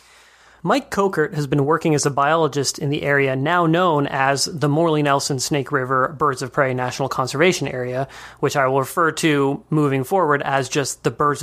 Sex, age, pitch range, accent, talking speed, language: male, 30-49, 135-165 Hz, American, 190 wpm, English